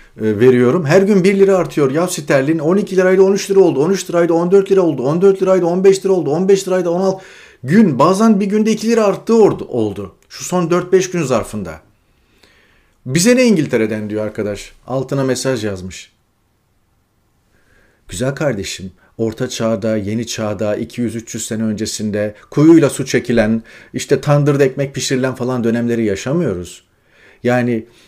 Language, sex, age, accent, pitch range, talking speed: Turkish, male, 40-59, native, 105-150 Hz, 145 wpm